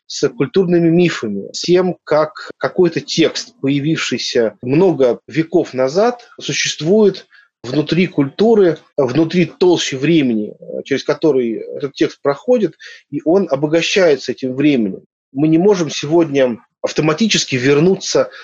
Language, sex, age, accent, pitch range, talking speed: Russian, male, 30-49, native, 135-175 Hz, 110 wpm